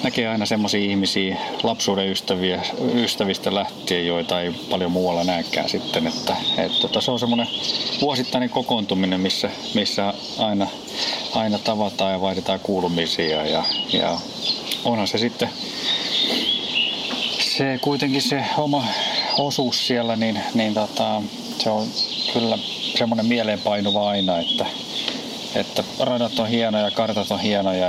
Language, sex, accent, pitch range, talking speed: Finnish, male, native, 95-110 Hz, 125 wpm